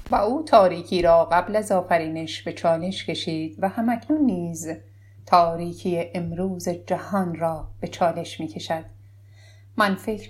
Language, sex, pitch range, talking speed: English, female, 155-190 Hz, 135 wpm